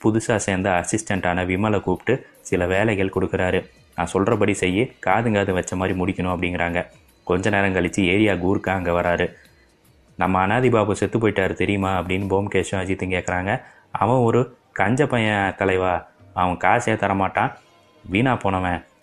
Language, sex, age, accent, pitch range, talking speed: Tamil, male, 20-39, native, 95-105 Hz, 130 wpm